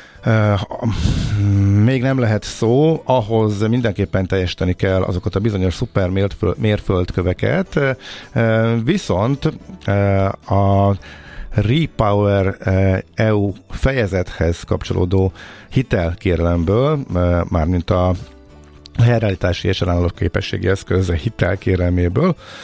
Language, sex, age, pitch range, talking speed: Hungarian, male, 50-69, 90-105 Hz, 80 wpm